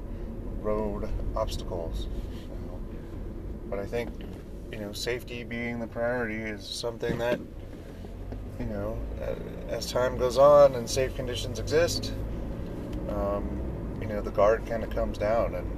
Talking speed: 130 wpm